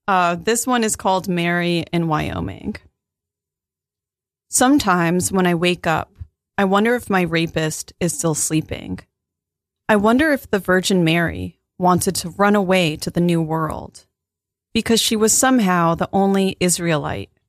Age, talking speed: 30-49, 145 wpm